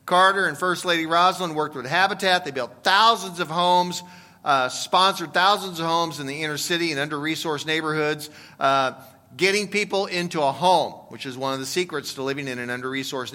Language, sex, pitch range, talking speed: English, male, 155-205 Hz, 190 wpm